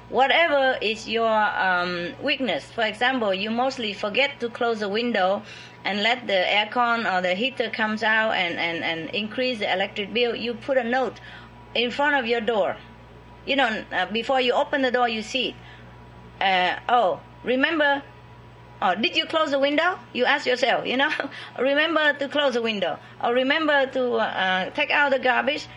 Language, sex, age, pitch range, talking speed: English, female, 30-49, 215-285 Hz, 180 wpm